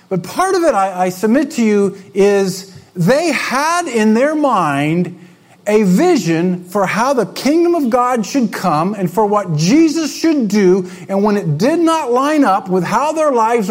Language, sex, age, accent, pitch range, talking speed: English, male, 50-69, American, 145-210 Hz, 185 wpm